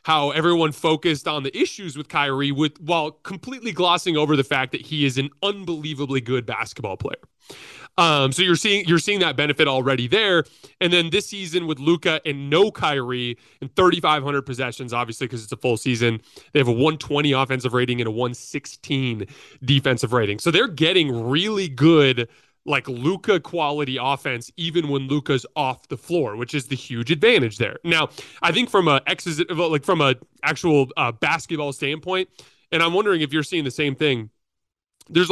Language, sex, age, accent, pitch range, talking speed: English, male, 20-39, American, 130-170 Hz, 185 wpm